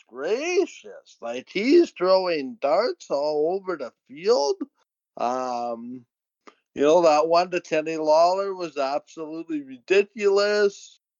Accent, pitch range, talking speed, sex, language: American, 145-185 Hz, 105 wpm, male, English